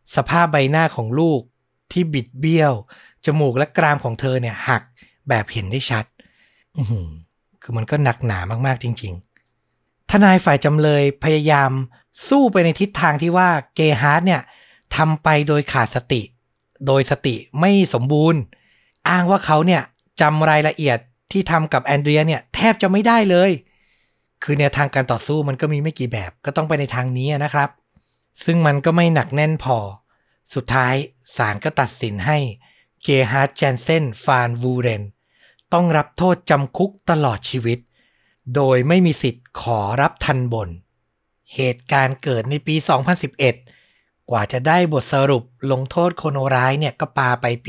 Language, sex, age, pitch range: Thai, male, 60-79, 125-155 Hz